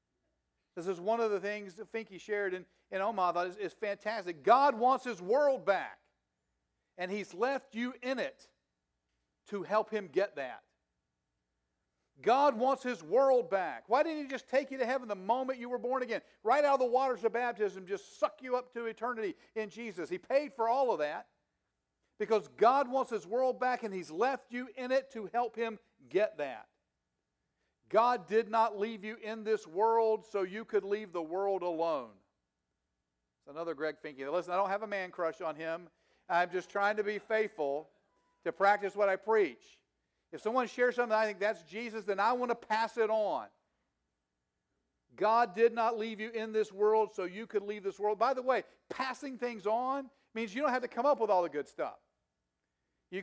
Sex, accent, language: male, American, English